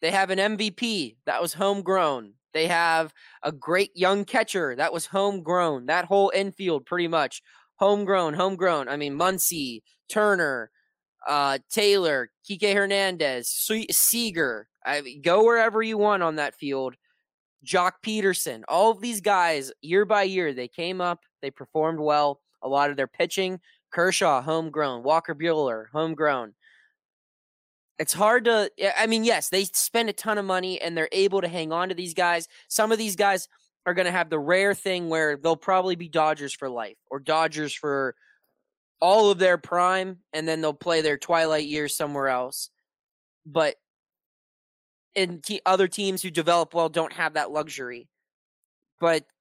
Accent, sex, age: American, male, 20-39